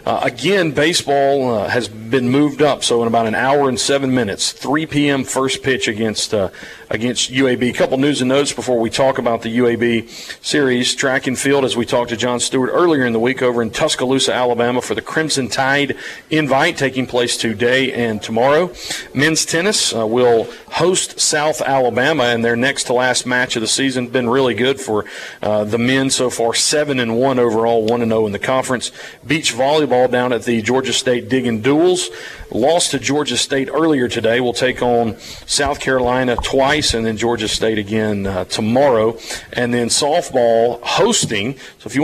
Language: English